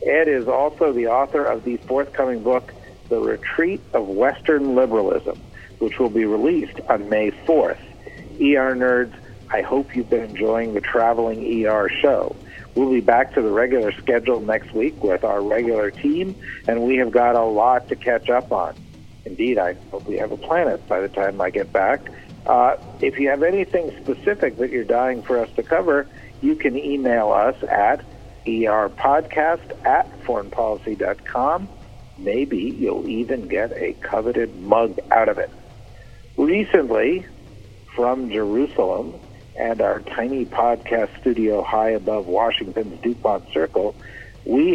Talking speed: 155 wpm